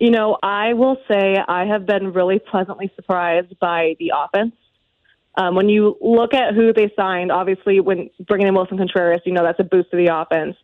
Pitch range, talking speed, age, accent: 185-225 Hz, 205 wpm, 20-39, American